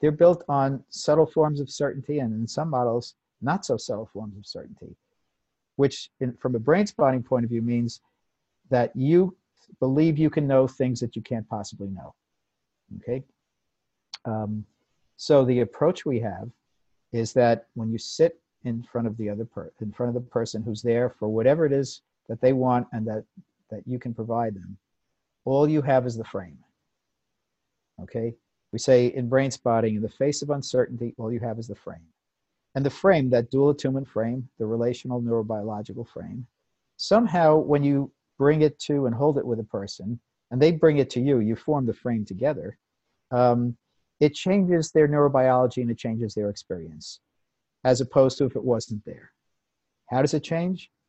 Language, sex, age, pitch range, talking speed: English, male, 50-69, 115-140 Hz, 185 wpm